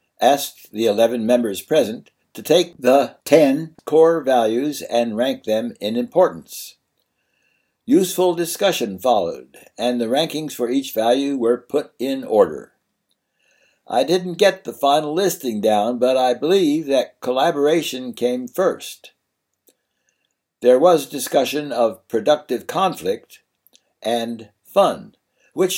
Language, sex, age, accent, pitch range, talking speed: English, male, 60-79, American, 115-155 Hz, 120 wpm